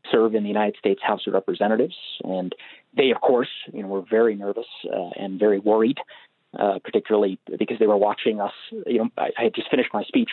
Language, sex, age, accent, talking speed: English, male, 40-59, American, 215 wpm